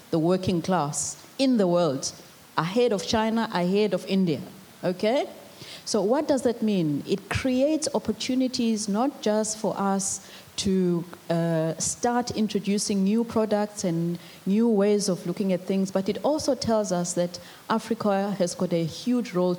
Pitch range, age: 175-215 Hz, 30-49